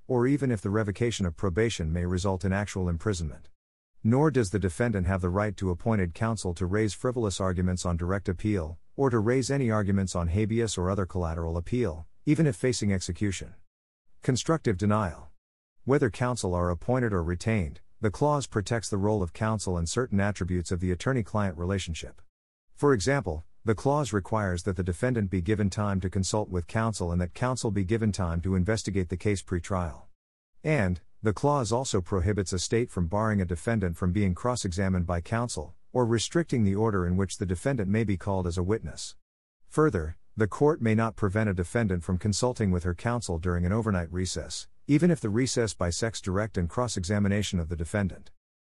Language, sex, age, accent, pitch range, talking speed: English, male, 50-69, American, 90-115 Hz, 190 wpm